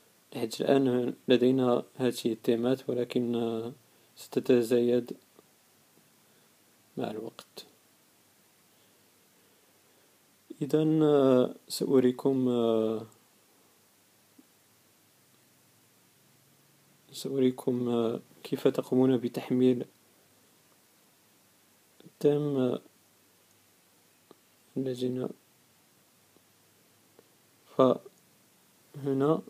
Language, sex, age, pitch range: English, male, 40-59, 125-140 Hz